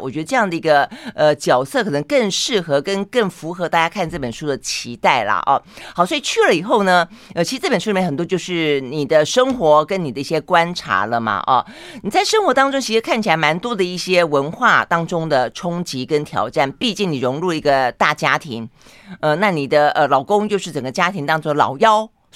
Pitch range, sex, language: 150-220 Hz, female, Chinese